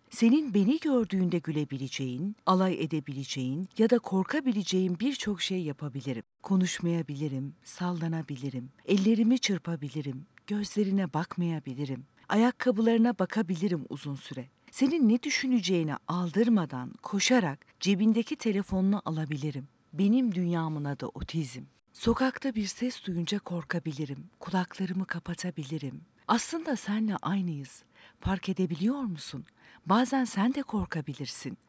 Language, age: Turkish, 50-69